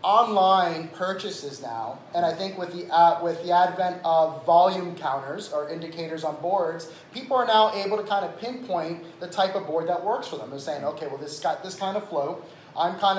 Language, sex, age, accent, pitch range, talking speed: English, male, 30-49, American, 165-205 Hz, 220 wpm